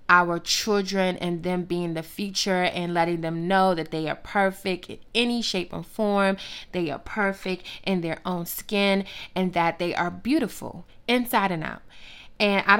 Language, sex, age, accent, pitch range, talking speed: English, female, 20-39, American, 175-225 Hz, 175 wpm